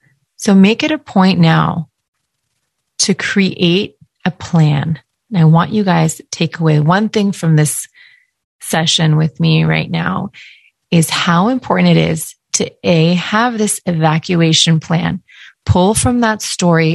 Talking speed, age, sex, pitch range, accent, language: 150 wpm, 30-49, female, 160-190 Hz, American, English